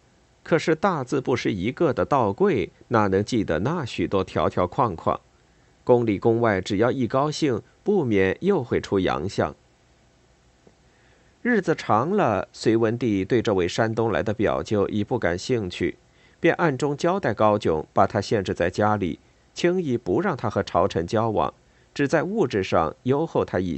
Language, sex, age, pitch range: Chinese, male, 50-69, 100-150 Hz